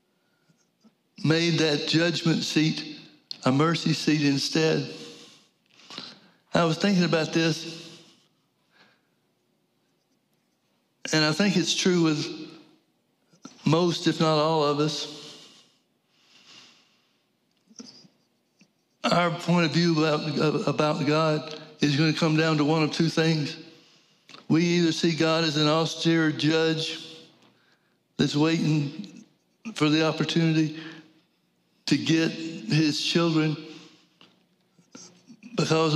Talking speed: 100 wpm